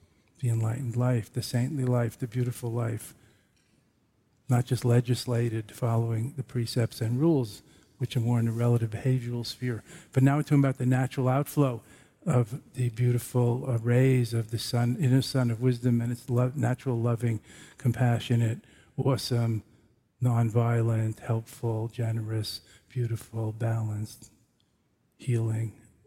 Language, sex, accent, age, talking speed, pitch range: English, male, American, 50-69, 130 wpm, 115-125 Hz